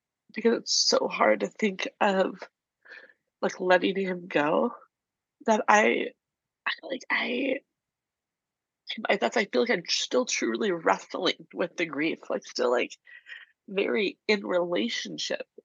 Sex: female